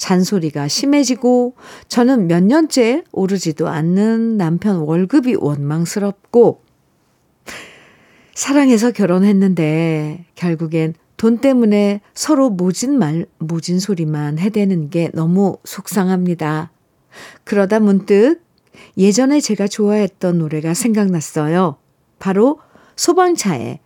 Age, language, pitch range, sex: 50-69, Korean, 165-220 Hz, female